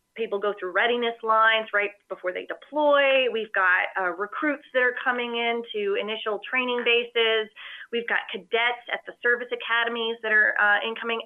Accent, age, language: American, 30-49, English